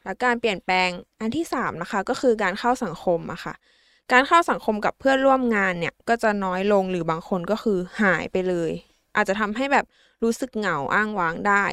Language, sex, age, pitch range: Thai, female, 20-39, 195-245 Hz